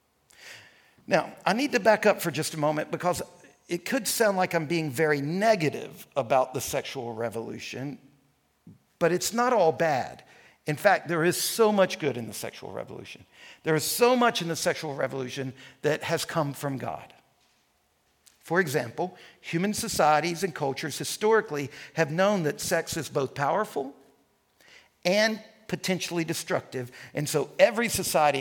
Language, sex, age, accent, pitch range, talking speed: English, male, 50-69, American, 145-205 Hz, 155 wpm